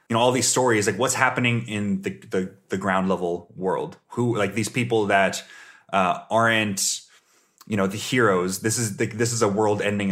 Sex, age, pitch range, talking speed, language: male, 30-49, 95-120 Hz, 200 wpm, English